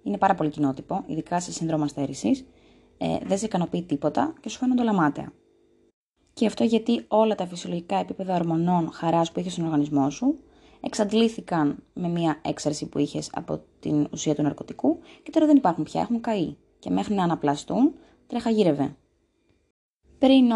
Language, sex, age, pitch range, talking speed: Greek, female, 20-39, 155-235 Hz, 165 wpm